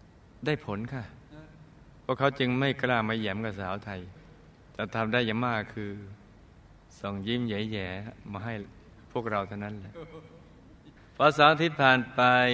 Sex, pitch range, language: male, 105-130 Hz, Thai